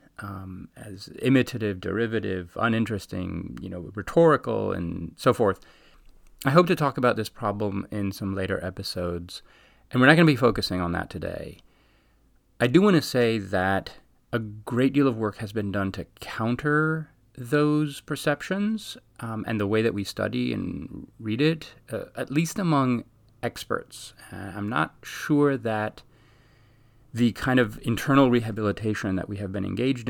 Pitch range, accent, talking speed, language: 95-130 Hz, American, 160 wpm, English